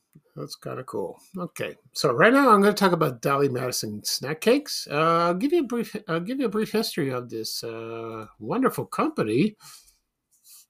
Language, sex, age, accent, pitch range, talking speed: English, male, 50-69, American, 130-180 Hz, 215 wpm